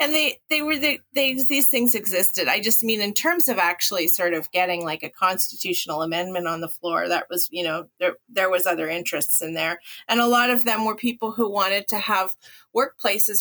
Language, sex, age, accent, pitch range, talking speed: English, female, 30-49, American, 170-220 Hz, 210 wpm